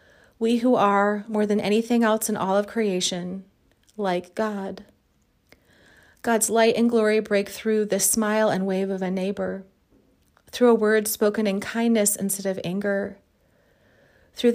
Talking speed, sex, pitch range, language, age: 150 wpm, female, 195-220 Hz, English, 30-49